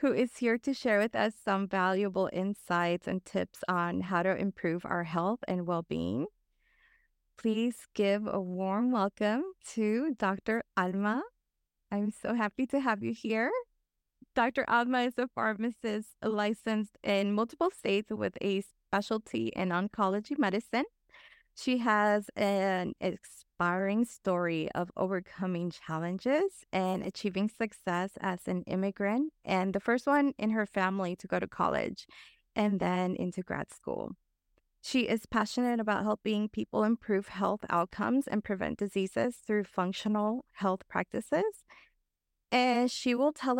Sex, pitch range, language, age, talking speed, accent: female, 195-240 Hz, English, 20-39, 140 wpm, American